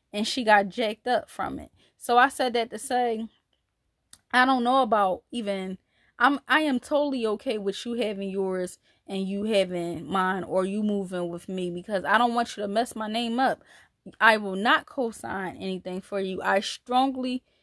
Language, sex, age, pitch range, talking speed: English, female, 10-29, 190-250 Hz, 190 wpm